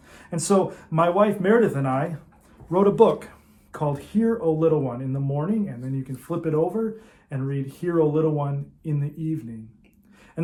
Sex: male